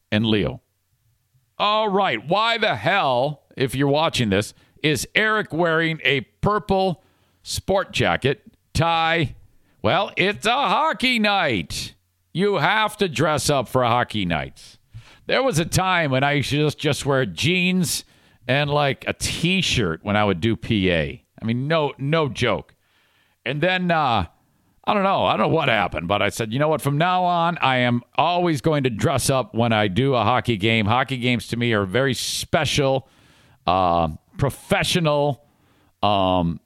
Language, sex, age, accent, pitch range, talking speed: English, male, 50-69, American, 110-175 Hz, 160 wpm